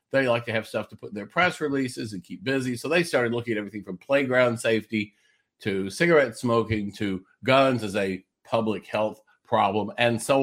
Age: 50-69